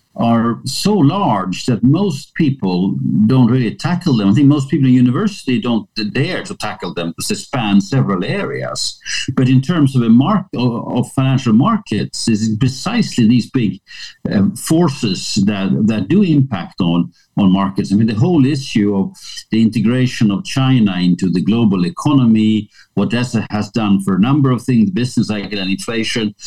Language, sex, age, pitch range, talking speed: English, male, 50-69, 100-130 Hz, 170 wpm